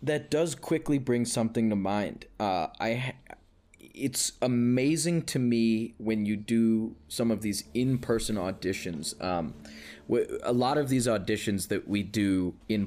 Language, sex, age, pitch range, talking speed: English, male, 20-39, 100-130 Hz, 150 wpm